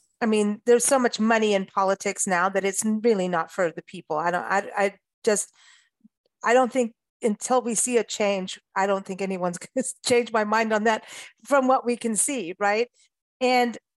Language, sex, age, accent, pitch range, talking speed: English, female, 40-59, American, 195-245 Hz, 200 wpm